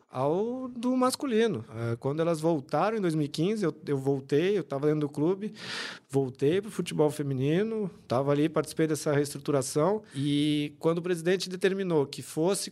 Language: Portuguese